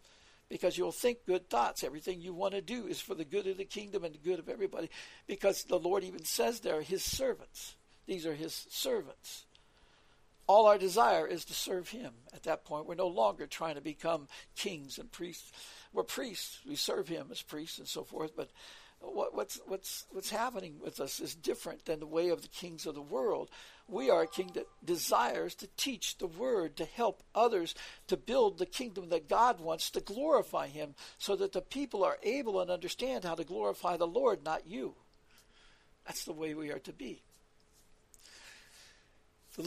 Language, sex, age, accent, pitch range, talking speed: English, male, 60-79, American, 165-240 Hz, 190 wpm